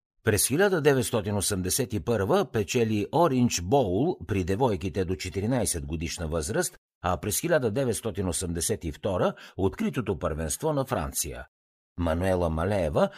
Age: 60-79